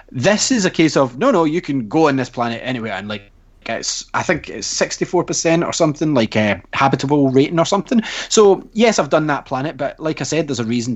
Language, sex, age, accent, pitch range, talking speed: English, male, 20-39, British, 110-145 Hz, 240 wpm